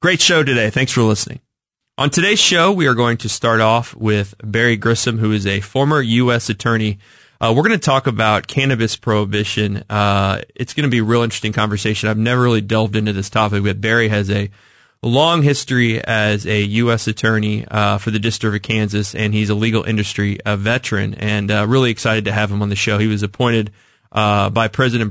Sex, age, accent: male, 20-39, American